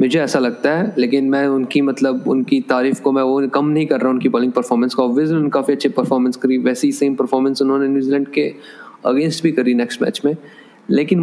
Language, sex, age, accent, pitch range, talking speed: Hindi, male, 20-39, native, 135-155 Hz, 215 wpm